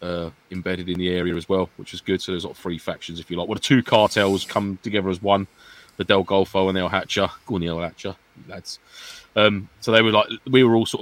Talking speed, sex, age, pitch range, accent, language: 280 wpm, male, 20-39, 85-105 Hz, British, English